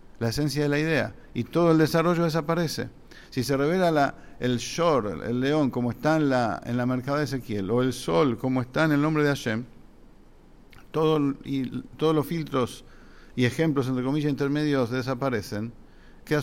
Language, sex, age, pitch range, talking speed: English, male, 50-69, 125-155 Hz, 165 wpm